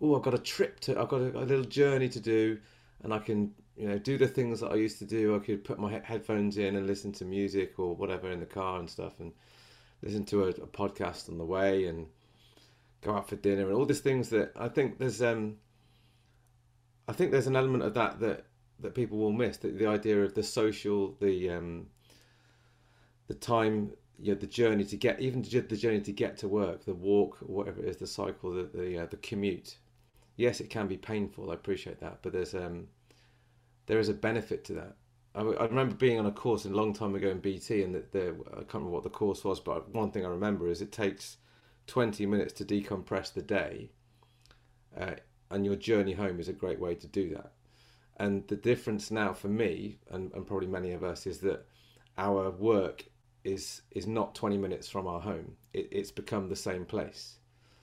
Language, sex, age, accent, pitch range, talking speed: English, male, 30-49, British, 95-120 Hz, 220 wpm